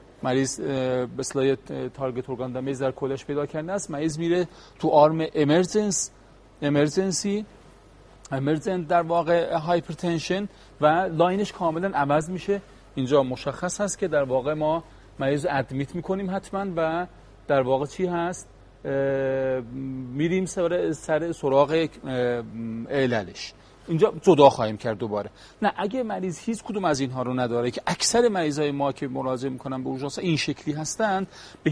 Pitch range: 130-175 Hz